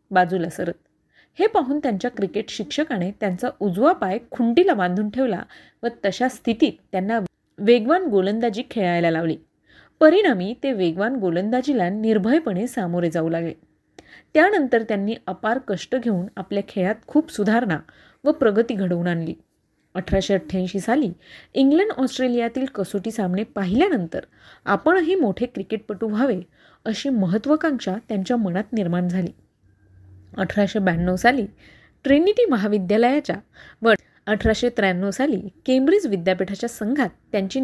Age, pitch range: 30-49, 185-260 Hz